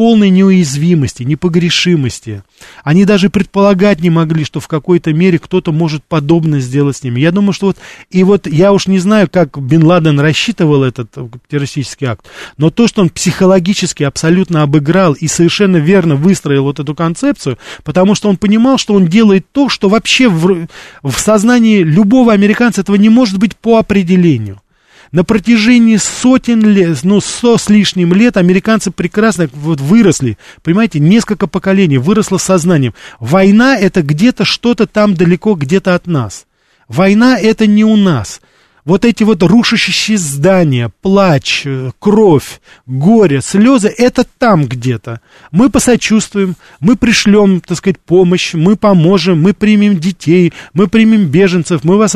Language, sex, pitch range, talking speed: Russian, male, 160-210 Hz, 150 wpm